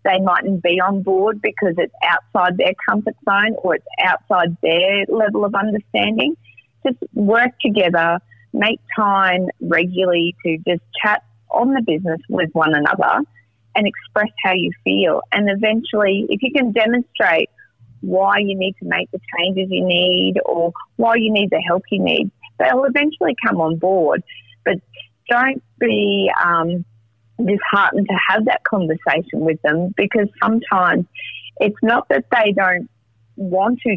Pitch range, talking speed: 170-210 Hz, 150 wpm